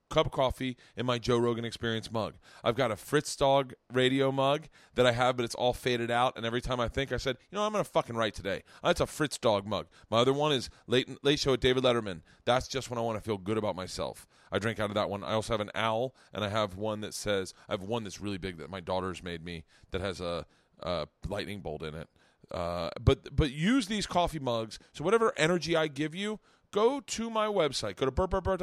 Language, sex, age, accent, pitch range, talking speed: English, male, 30-49, American, 115-175 Hz, 250 wpm